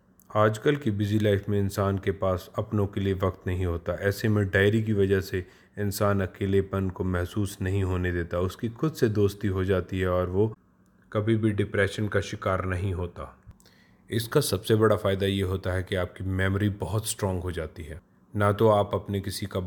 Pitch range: 95-110 Hz